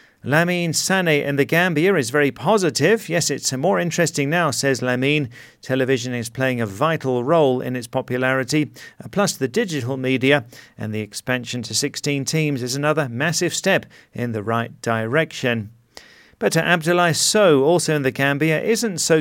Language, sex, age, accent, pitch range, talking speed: English, male, 40-59, British, 125-160 Hz, 160 wpm